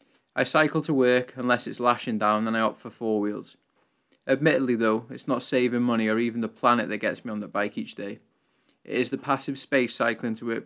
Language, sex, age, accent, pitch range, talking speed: English, male, 20-39, British, 115-130 Hz, 225 wpm